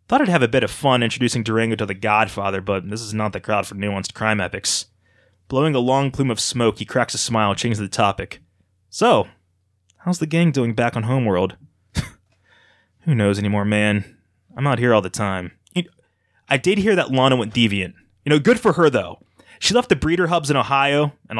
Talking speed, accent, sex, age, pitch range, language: 215 wpm, American, male, 20-39, 105-155 Hz, English